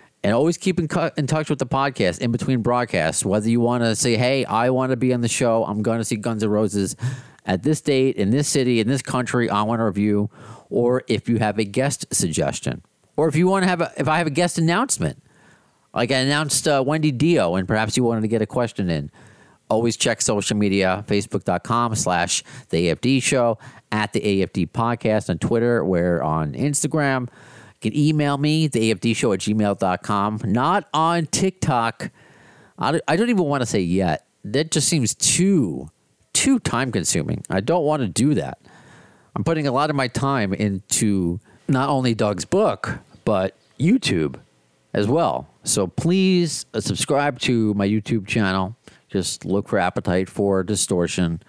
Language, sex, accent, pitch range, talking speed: English, male, American, 105-145 Hz, 185 wpm